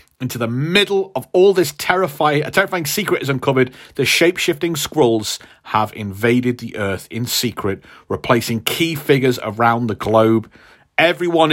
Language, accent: English, British